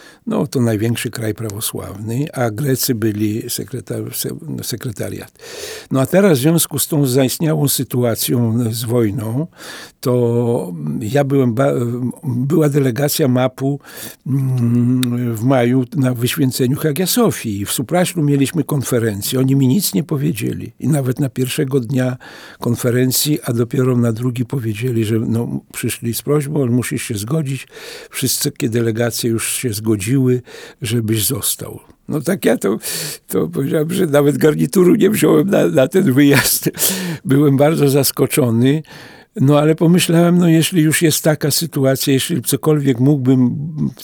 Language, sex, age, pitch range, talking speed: Polish, male, 60-79, 120-145 Hz, 140 wpm